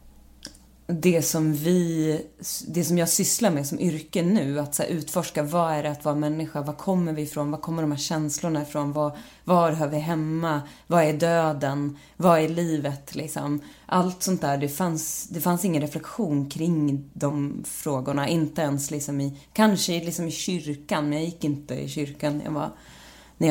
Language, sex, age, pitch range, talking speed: Swedish, female, 30-49, 145-165 Hz, 180 wpm